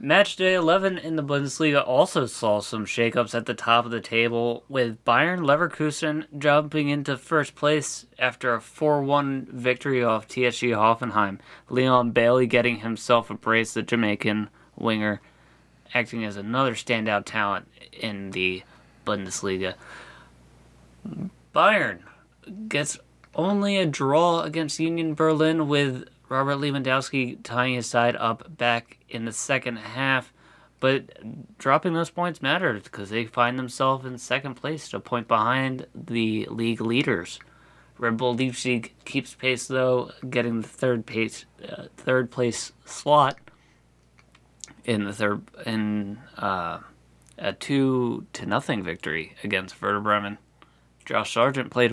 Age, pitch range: 20-39, 110-140 Hz